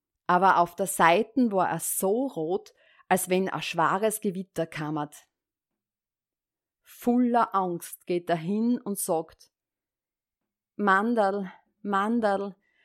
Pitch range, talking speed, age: 175-230 Hz, 105 wpm, 30-49